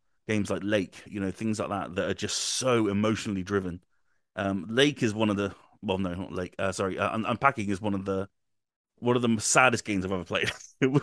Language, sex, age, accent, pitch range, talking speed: English, male, 30-49, British, 95-125 Hz, 220 wpm